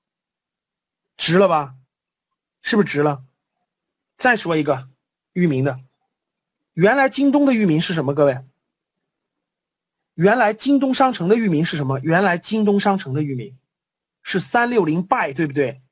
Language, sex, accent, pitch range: Chinese, male, native, 150-230 Hz